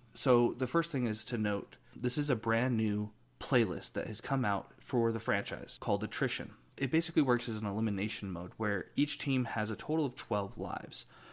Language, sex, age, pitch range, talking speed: English, male, 30-49, 105-130 Hz, 200 wpm